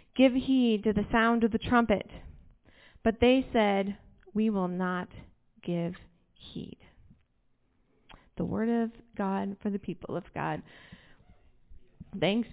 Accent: American